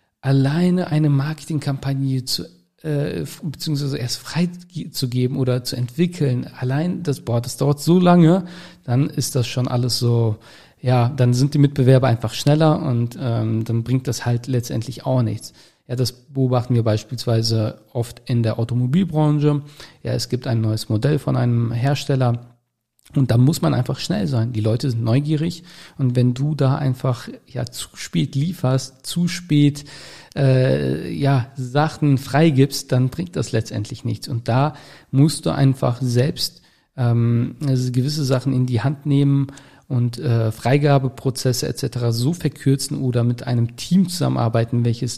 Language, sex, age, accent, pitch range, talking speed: German, male, 40-59, German, 120-145 Hz, 150 wpm